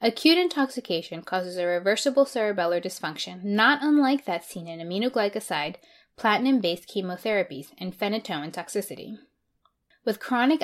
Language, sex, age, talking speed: English, female, 20-39, 120 wpm